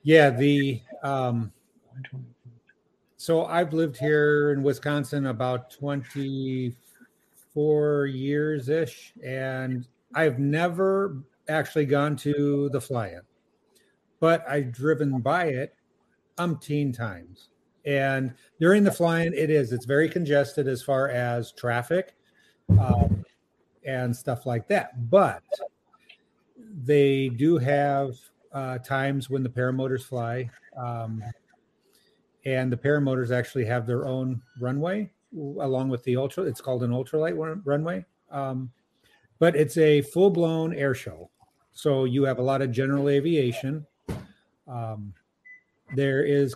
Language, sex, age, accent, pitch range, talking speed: English, male, 50-69, American, 125-150 Hz, 120 wpm